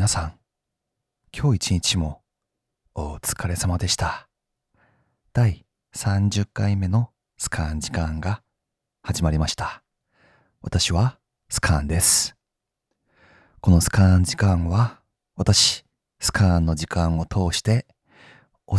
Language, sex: Japanese, male